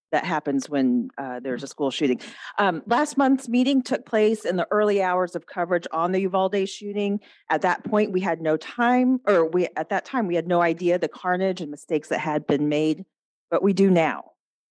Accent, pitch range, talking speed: American, 170-210 Hz, 210 wpm